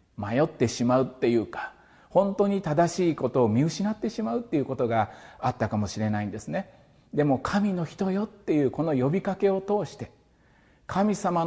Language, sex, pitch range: Japanese, male, 135-205 Hz